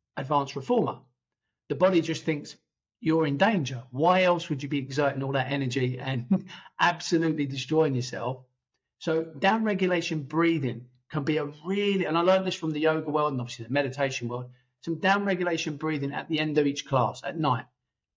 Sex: male